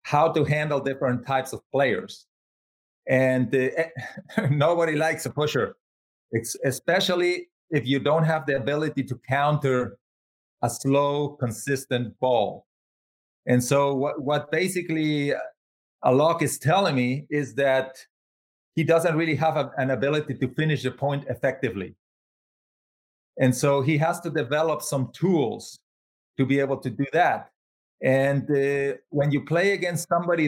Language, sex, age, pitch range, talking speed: English, male, 40-59, 130-155 Hz, 140 wpm